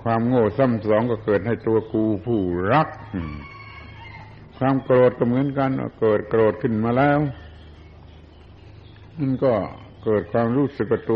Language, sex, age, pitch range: Thai, male, 60-79, 95-120 Hz